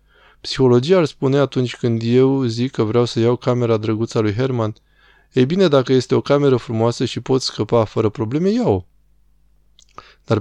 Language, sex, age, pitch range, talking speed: Romanian, male, 20-39, 115-130 Hz, 175 wpm